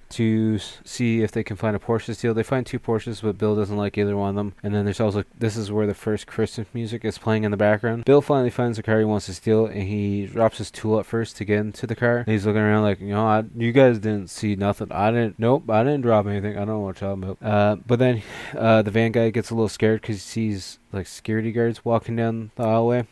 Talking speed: 280 wpm